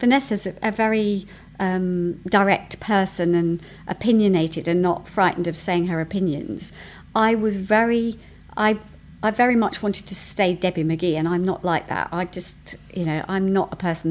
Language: English